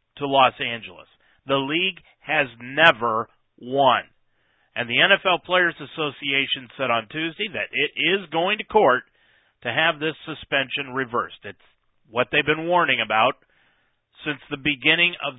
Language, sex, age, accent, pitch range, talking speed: English, male, 40-59, American, 120-165 Hz, 145 wpm